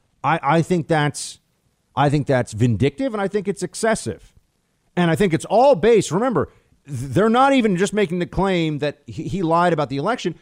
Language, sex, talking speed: English, male, 190 wpm